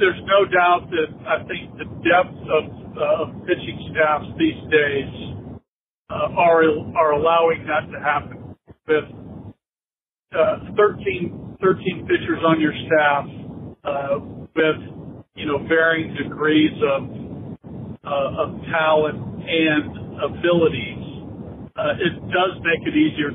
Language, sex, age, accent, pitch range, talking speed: English, male, 50-69, American, 145-170 Hz, 125 wpm